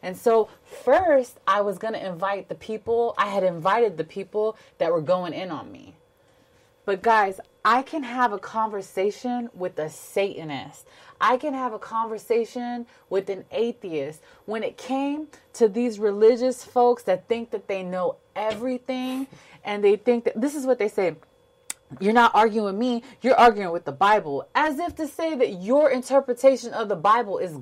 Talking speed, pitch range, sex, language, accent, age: 180 wpm, 200-265 Hz, female, English, American, 30-49